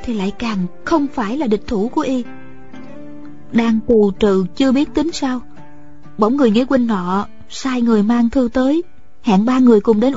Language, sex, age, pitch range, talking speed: Vietnamese, female, 20-39, 210-265 Hz, 190 wpm